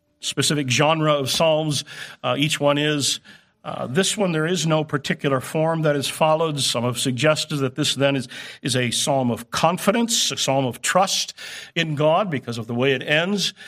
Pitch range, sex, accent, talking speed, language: 125-160 Hz, male, American, 190 wpm, English